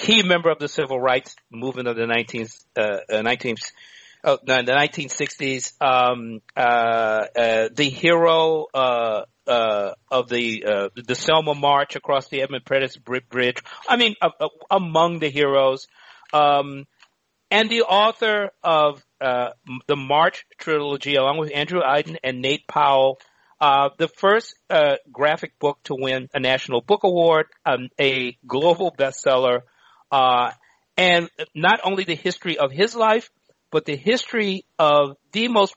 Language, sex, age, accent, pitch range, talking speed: English, male, 50-69, American, 125-170 Hz, 150 wpm